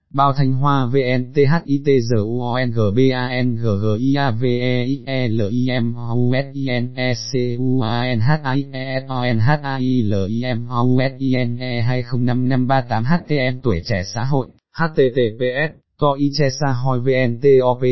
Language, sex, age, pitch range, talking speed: Vietnamese, male, 20-39, 120-140 Hz, 55 wpm